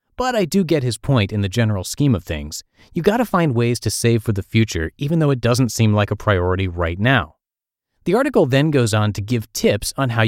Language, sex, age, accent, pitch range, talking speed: English, male, 30-49, American, 100-145 Hz, 245 wpm